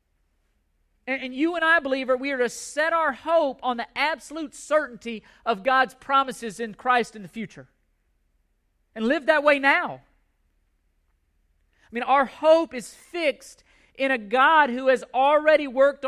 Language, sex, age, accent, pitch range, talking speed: English, male, 40-59, American, 215-290 Hz, 155 wpm